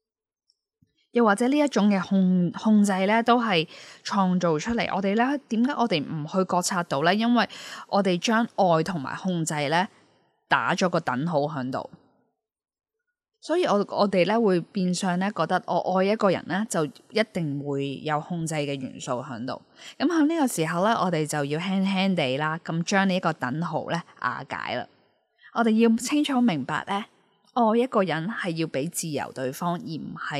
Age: 10-29